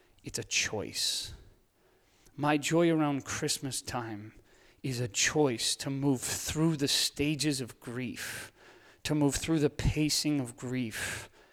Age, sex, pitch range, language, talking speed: 30-49, male, 120-150 Hz, English, 130 wpm